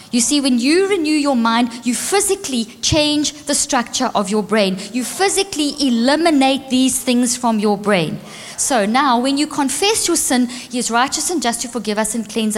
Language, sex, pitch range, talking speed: English, female, 225-285 Hz, 190 wpm